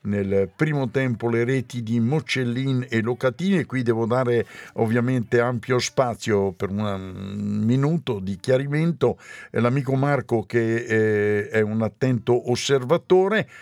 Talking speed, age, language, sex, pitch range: 120 wpm, 60-79, Italian, male, 110-135 Hz